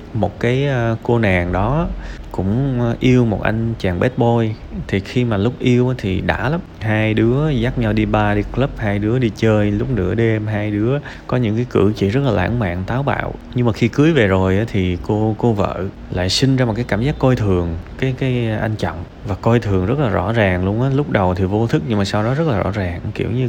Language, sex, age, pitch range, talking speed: Vietnamese, male, 20-39, 95-125 Hz, 245 wpm